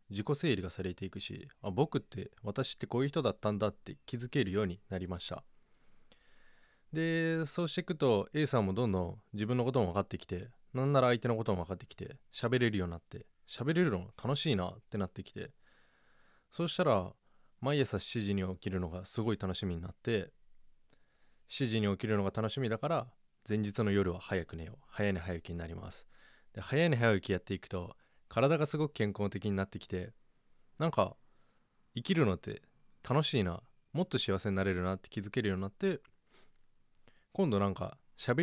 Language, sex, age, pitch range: Japanese, male, 20-39, 95-135 Hz